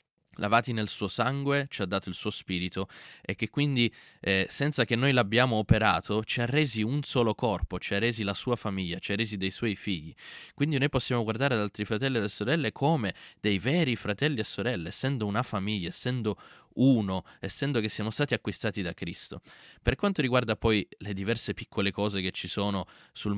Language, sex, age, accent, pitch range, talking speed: Italian, male, 20-39, native, 100-125 Hz, 195 wpm